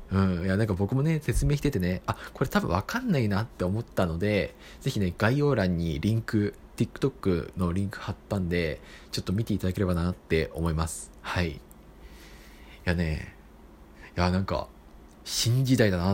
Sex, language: male, Japanese